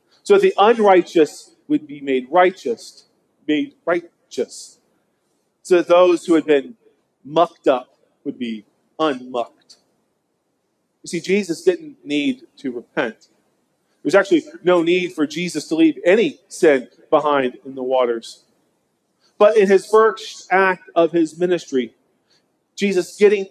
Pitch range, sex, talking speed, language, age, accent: 150-185 Hz, male, 135 wpm, English, 40-59, American